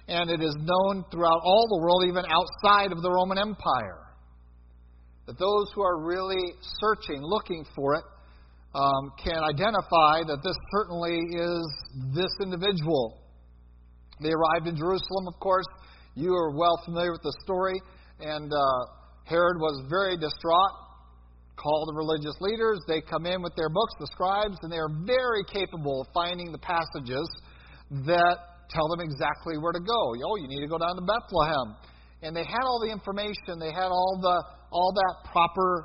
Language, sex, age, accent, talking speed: English, male, 50-69, American, 165 wpm